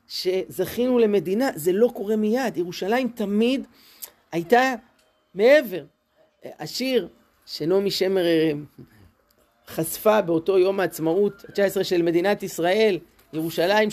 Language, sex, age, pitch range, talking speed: Hebrew, male, 30-49, 170-230 Hz, 100 wpm